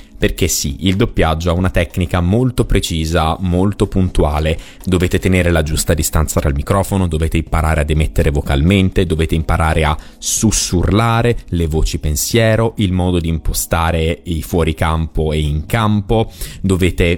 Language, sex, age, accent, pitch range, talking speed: Italian, male, 30-49, native, 80-105 Hz, 145 wpm